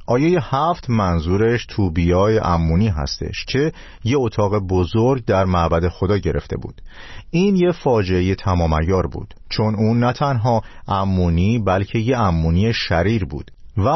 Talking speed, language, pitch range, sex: 140 wpm, Persian, 90-120 Hz, male